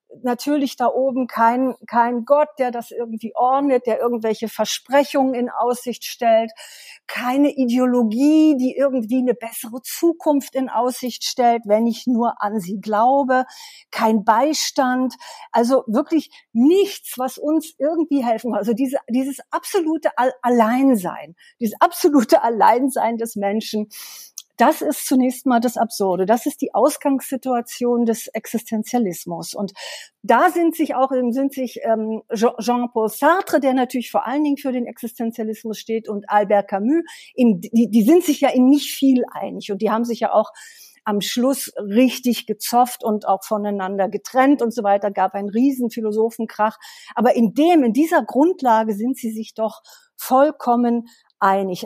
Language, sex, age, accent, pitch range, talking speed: German, female, 50-69, German, 220-275 Hz, 150 wpm